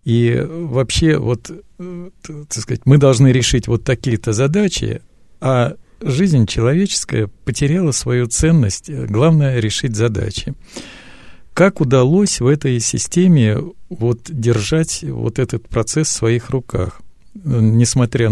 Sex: male